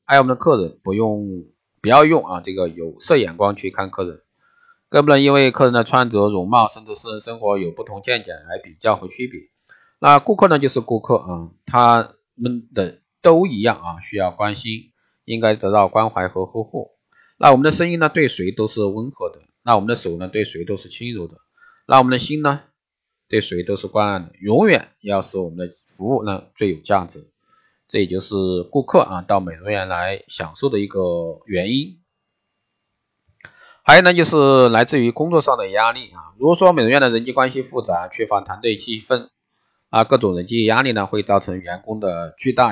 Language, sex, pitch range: Chinese, male, 95-135 Hz